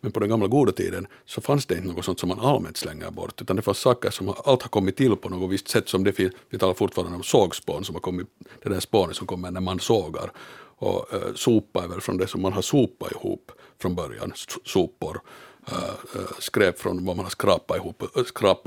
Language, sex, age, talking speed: Swedish, male, 60-79, 230 wpm